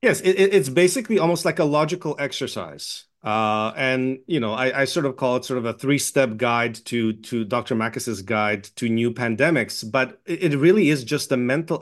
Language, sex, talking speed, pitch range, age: English, male, 200 wpm, 115-140 Hz, 30-49